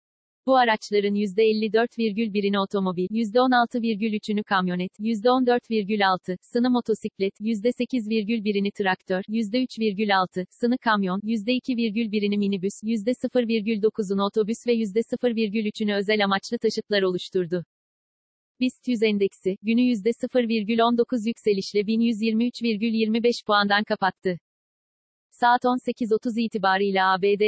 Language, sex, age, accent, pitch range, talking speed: Turkish, female, 40-59, native, 200-235 Hz, 90 wpm